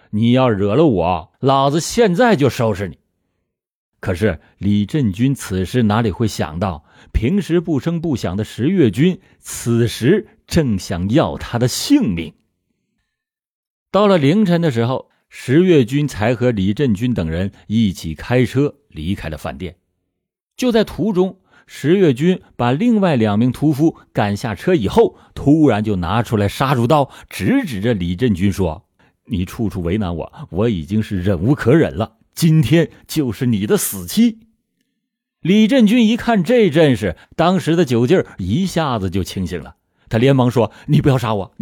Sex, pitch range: male, 100-155 Hz